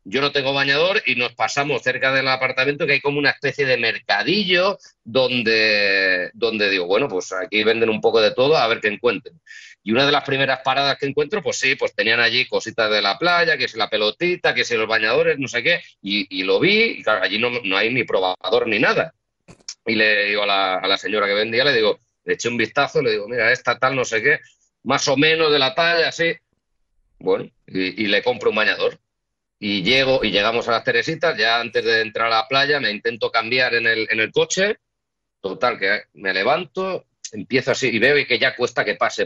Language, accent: Spanish, Spanish